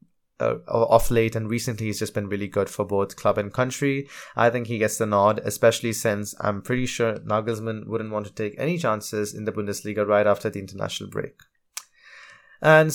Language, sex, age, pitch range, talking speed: English, male, 20-39, 105-125 Hz, 195 wpm